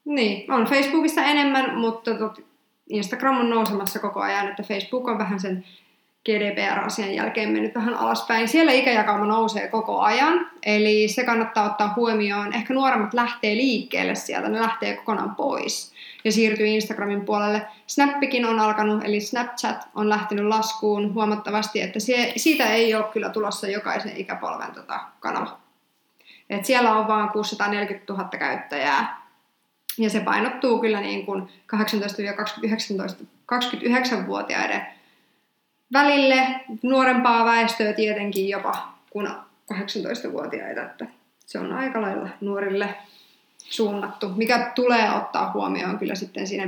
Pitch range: 210-250 Hz